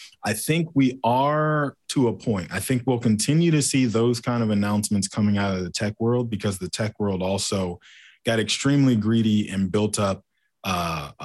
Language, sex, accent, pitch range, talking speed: English, male, American, 95-115 Hz, 185 wpm